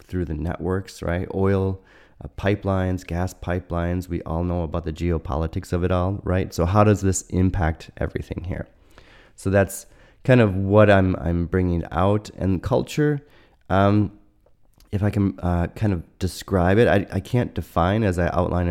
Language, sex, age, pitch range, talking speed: English, male, 30-49, 85-100 Hz, 170 wpm